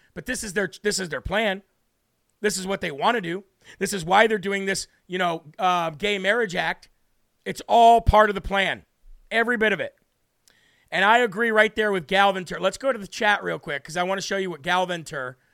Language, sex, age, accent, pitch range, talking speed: English, male, 40-59, American, 180-210 Hz, 230 wpm